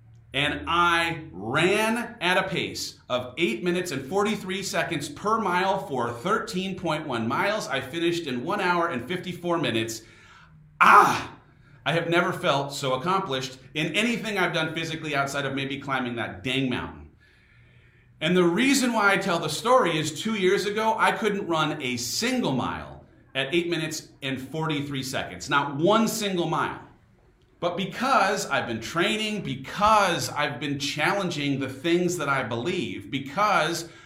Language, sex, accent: English, male, American